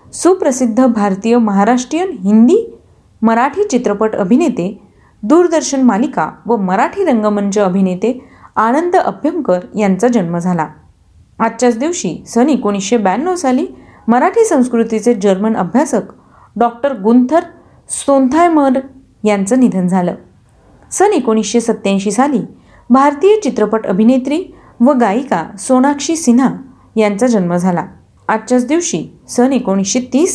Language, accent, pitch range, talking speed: Marathi, native, 210-275 Hz, 100 wpm